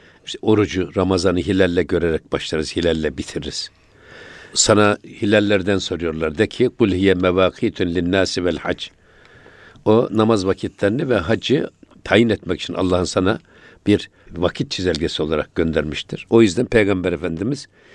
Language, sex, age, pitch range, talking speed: Turkish, male, 60-79, 95-115 Hz, 120 wpm